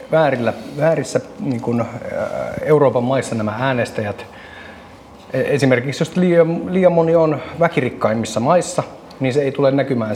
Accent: native